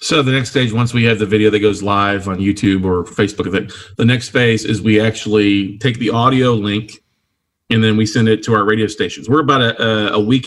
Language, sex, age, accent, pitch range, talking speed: English, male, 40-59, American, 105-120 Hz, 230 wpm